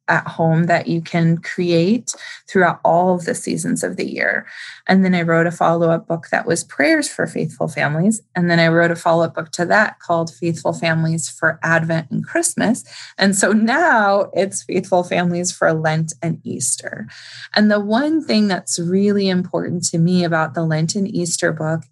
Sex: female